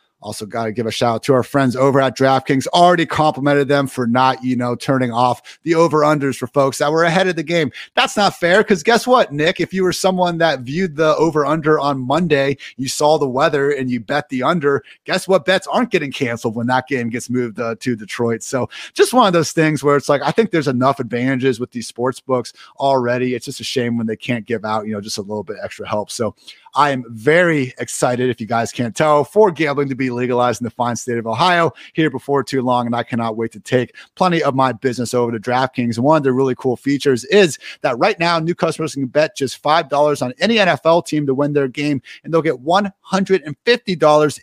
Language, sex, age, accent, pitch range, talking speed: English, male, 30-49, American, 125-160 Hz, 240 wpm